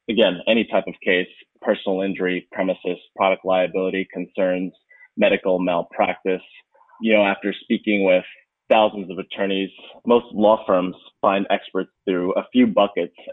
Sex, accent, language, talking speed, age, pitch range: male, American, English, 135 wpm, 20-39, 95-110 Hz